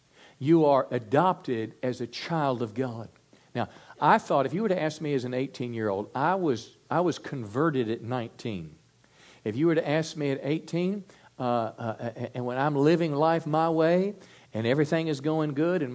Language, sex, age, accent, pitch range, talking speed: English, male, 50-69, American, 110-140 Hz, 190 wpm